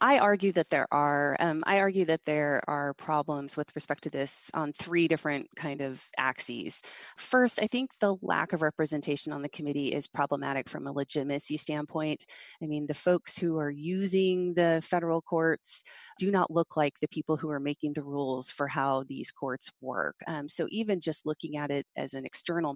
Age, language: 30-49, English